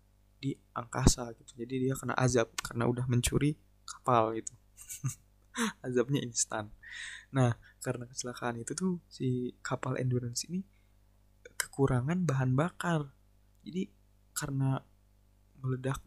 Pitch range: 105-135 Hz